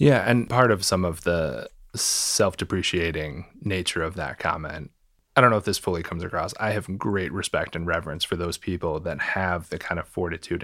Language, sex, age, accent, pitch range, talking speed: English, male, 20-39, American, 85-100 Hz, 195 wpm